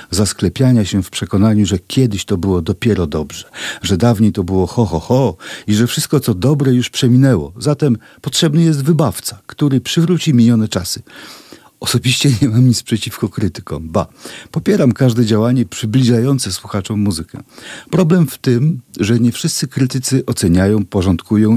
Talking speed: 150 wpm